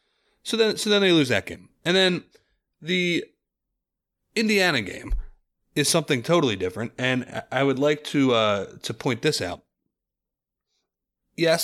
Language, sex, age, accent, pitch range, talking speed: English, male, 30-49, American, 105-145 Hz, 145 wpm